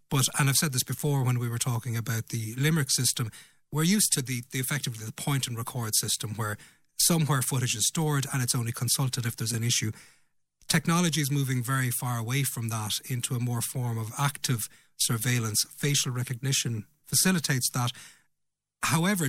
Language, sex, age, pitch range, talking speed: English, male, 30-49, 120-150 Hz, 180 wpm